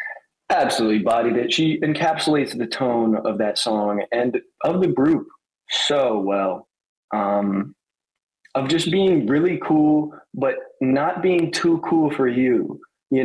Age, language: 20-39, English